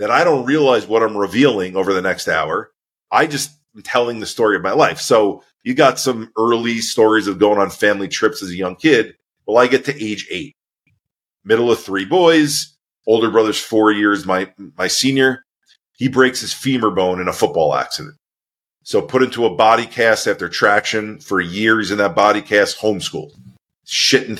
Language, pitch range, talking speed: English, 100-120 Hz, 190 wpm